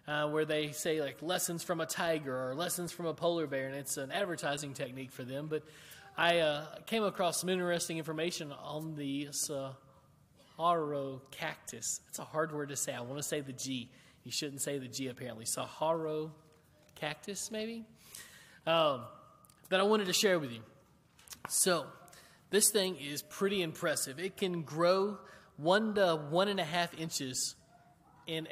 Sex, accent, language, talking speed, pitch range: male, American, English, 170 wpm, 145-175 Hz